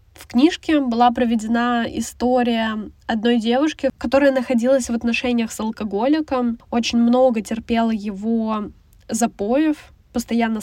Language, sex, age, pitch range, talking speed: Russian, female, 10-29, 225-265 Hz, 105 wpm